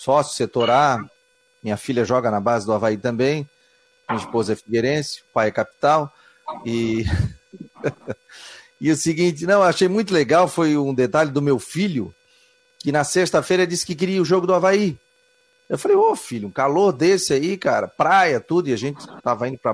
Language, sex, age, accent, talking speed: Portuguese, male, 40-59, Brazilian, 180 wpm